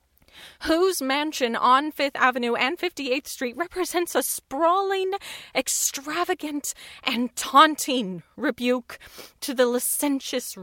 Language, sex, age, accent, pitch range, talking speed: English, female, 30-49, American, 210-275 Hz, 100 wpm